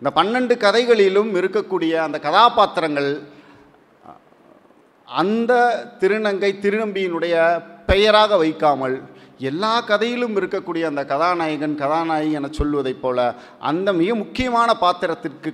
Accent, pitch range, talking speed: native, 160-225 Hz, 95 wpm